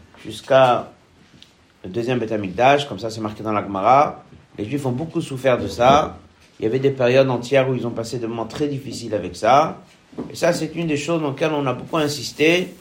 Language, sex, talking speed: French, male, 215 wpm